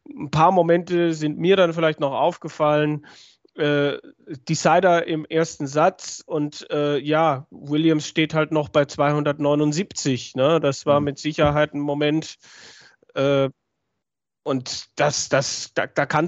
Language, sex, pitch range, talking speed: German, male, 145-165 Hz, 120 wpm